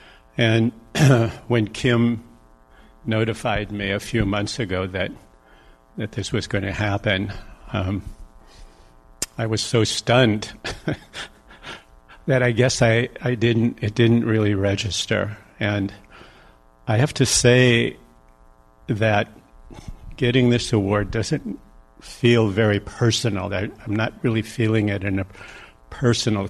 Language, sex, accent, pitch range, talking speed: English, male, American, 95-115 Hz, 120 wpm